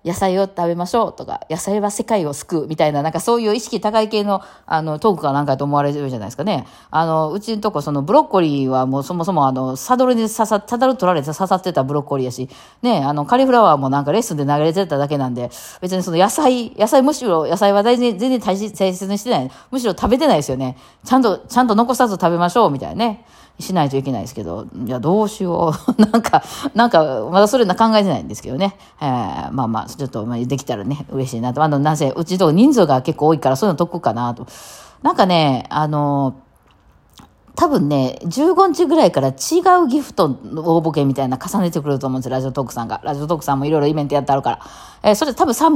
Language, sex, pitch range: Japanese, female, 135-215 Hz